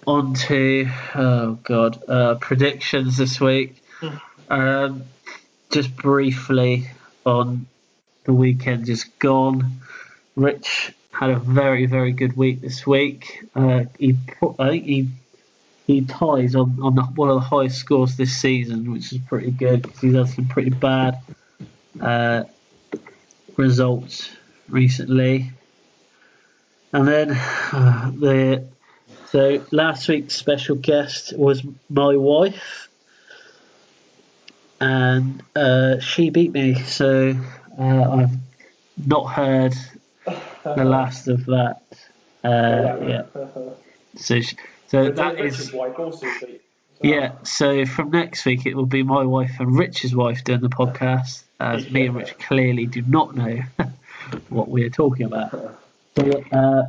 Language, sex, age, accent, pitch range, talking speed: English, male, 30-49, British, 130-140 Hz, 125 wpm